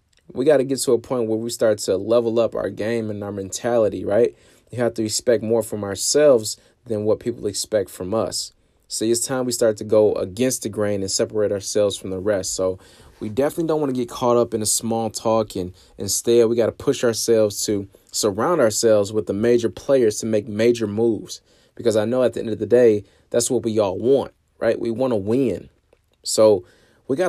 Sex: male